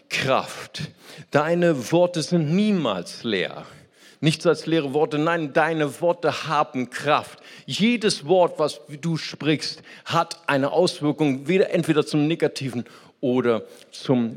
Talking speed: 115 wpm